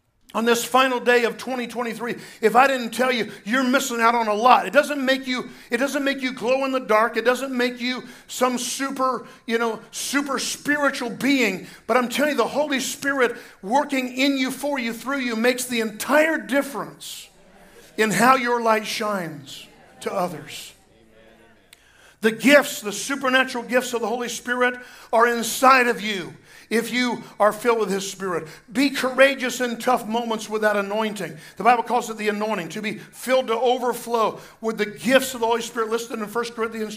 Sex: male